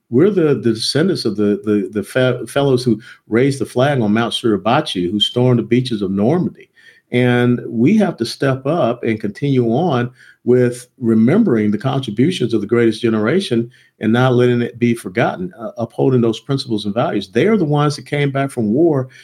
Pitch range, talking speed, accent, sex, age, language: 110-140 Hz, 185 wpm, American, male, 50-69, English